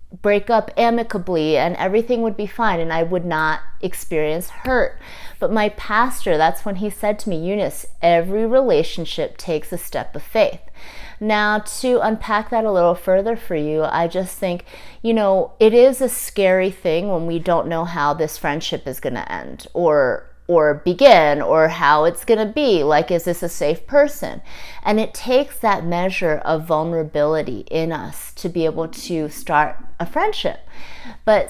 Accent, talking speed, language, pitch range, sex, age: American, 175 wpm, English, 165-230 Hz, female, 30-49